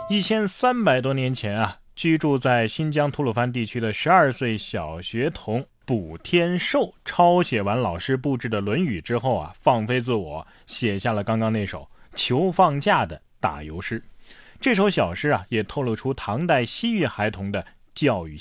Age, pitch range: 20-39, 110-155 Hz